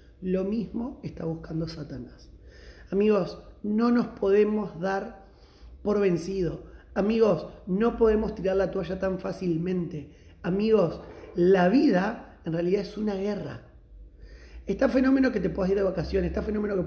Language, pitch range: Spanish, 155-195 Hz